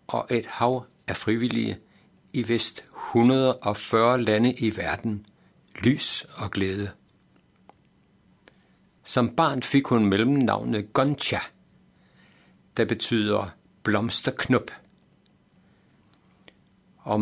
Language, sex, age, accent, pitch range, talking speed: Danish, male, 60-79, native, 105-140 Hz, 85 wpm